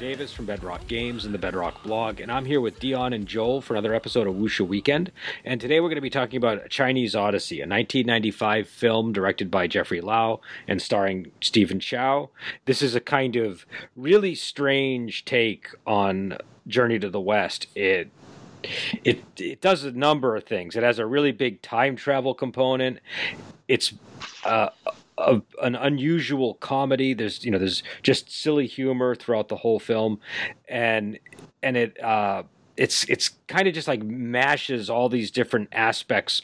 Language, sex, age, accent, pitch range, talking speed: English, male, 40-59, American, 105-135 Hz, 175 wpm